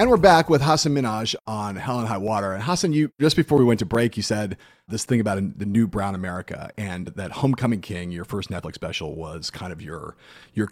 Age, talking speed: 40-59, 235 wpm